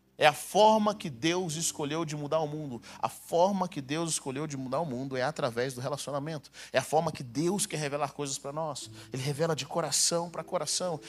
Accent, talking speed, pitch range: Brazilian, 210 wpm, 140-185 Hz